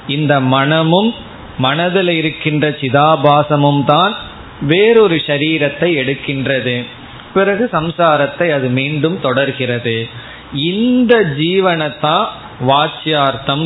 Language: Tamil